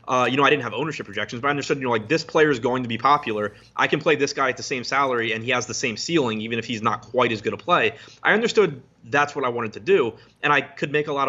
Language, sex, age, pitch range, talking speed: English, male, 20-39, 115-140 Hz, 315 wpm